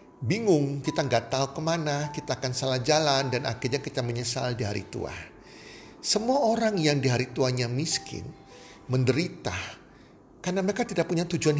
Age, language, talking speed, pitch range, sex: 50-69, Indonesian, 150 wpm, 125-180 Hz, male